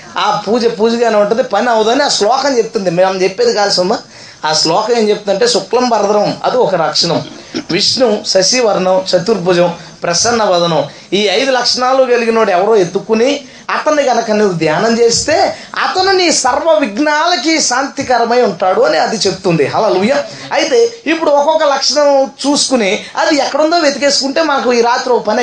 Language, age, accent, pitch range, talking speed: Telugu, 20-39, native, 205-285 Hz, 150 wpm